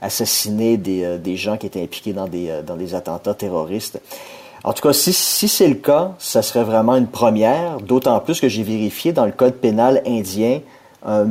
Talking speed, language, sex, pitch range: 205 wpm, French, male, 100-130 Hz